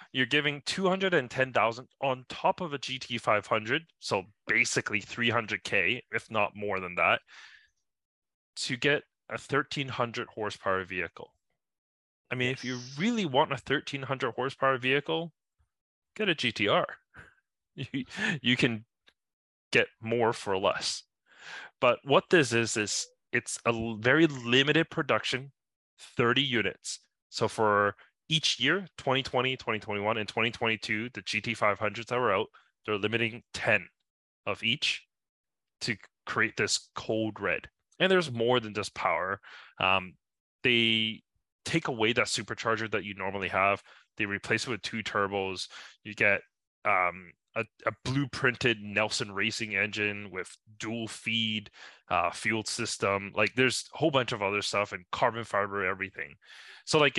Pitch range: 105-130 Hz